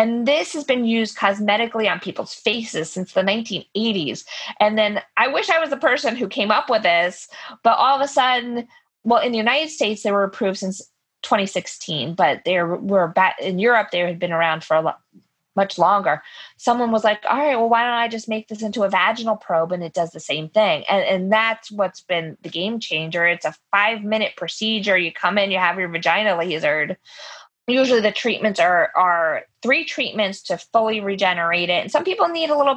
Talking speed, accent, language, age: 210 wpm, American, English, 20-39